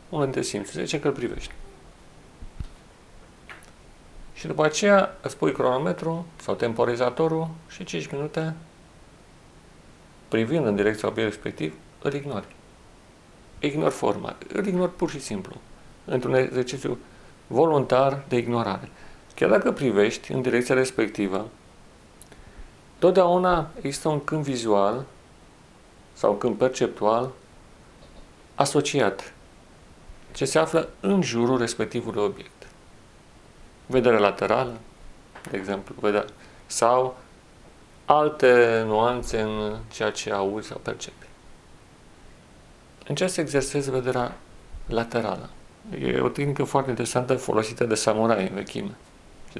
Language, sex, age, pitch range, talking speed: Romanian, male, 40-59, 105-145 Hz, 110 wpm